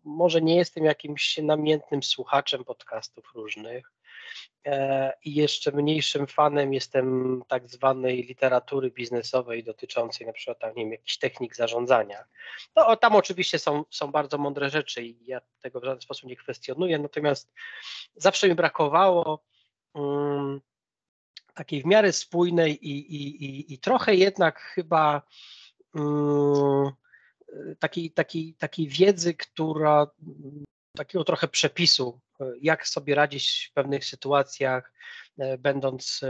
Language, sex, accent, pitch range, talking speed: Polish, male, native, 135-165 Hz, 120 wpm